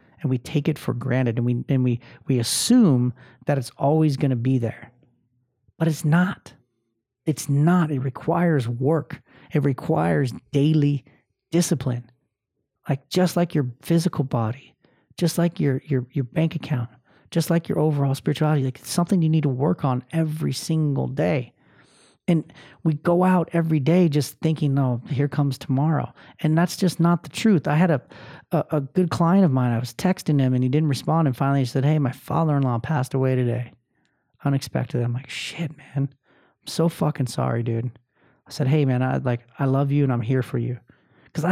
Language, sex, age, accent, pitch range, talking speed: English, male, 40-59, American, 130-165 Hz, 190 wpm